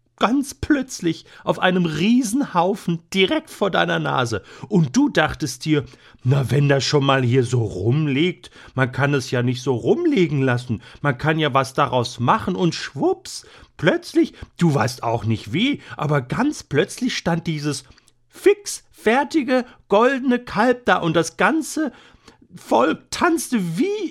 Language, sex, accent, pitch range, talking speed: German, male, German, 120-160 Hz, 145 wpm